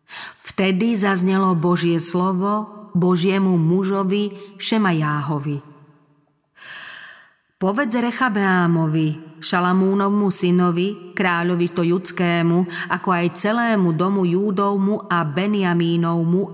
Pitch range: 165-200 Hz